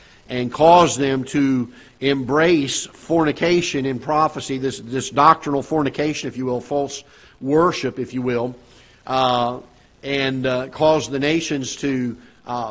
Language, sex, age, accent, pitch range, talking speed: English, male, 50-69, American, 125-155 Hz, 130 wpm